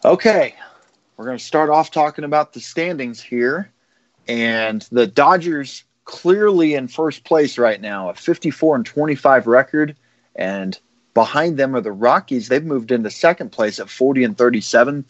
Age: 30-49